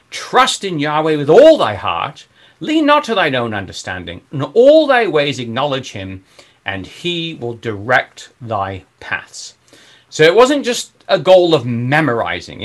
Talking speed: 155 wpm